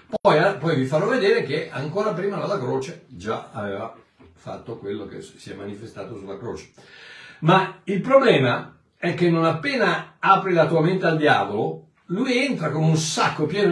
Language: Italian